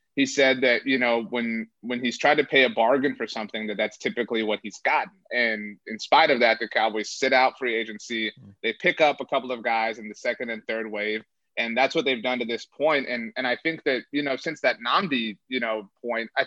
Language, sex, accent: English, male, American